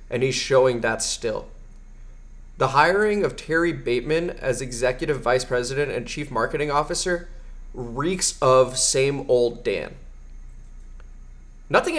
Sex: male